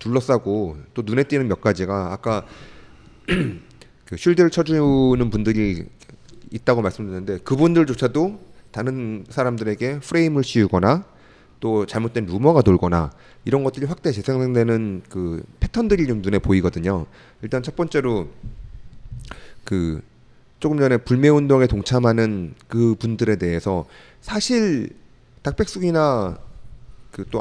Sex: male